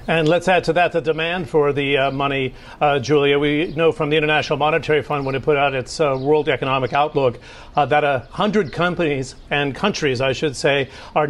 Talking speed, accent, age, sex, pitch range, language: 210 wpm, American, 50-69, male, 135-160 Hz, English